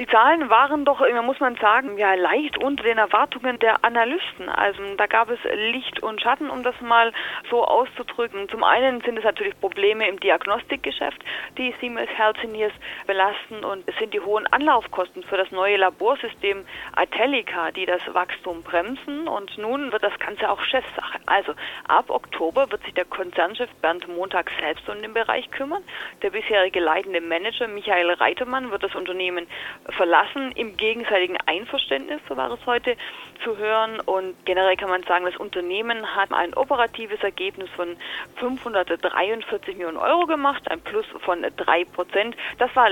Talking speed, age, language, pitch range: 160 wpm, 30-49, German, 195-270 Hz